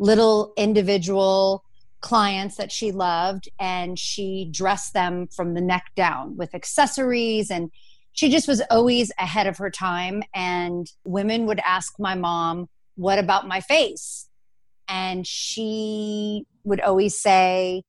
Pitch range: 180-220 Hz